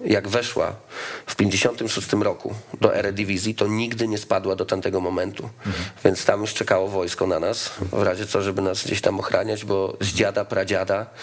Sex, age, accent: male, 40-59, native